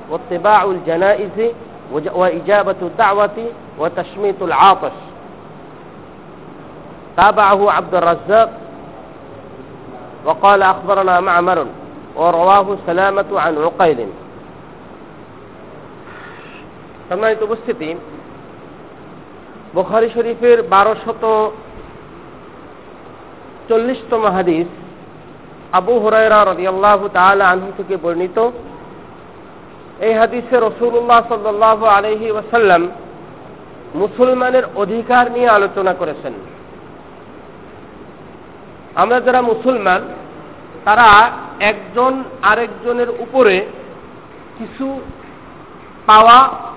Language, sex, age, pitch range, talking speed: Bengali, male, 50-69, 190-240 Hz, 65 wpm